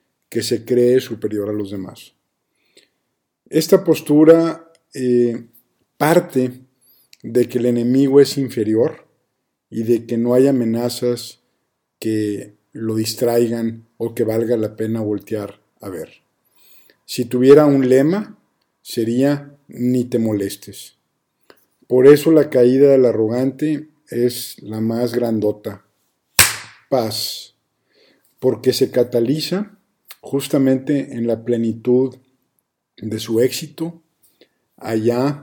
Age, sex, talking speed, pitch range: 50-69, male, 110 wpm, 115-140 Hz